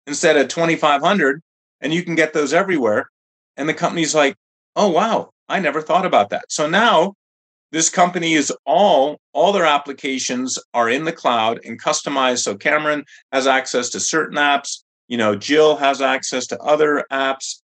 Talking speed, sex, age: 170 wpm, male, 30-49